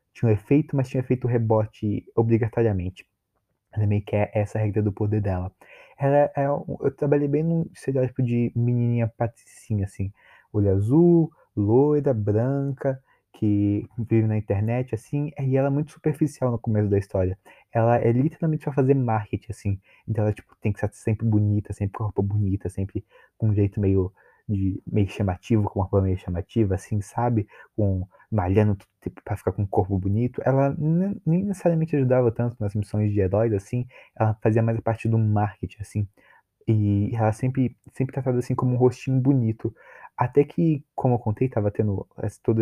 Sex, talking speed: male, 185 wpm